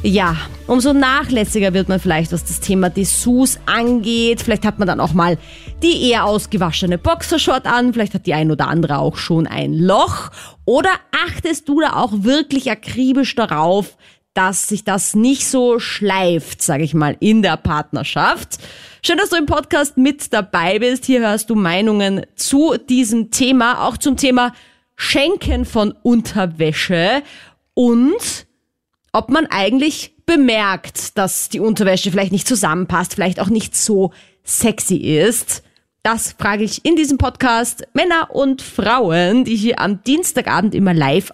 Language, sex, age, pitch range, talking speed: German, female, 30-49, 175-255 Hz, 150 wpm